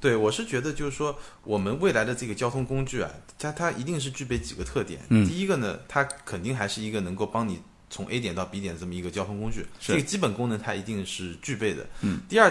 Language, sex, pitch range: Chinese, male, 95-140 Hz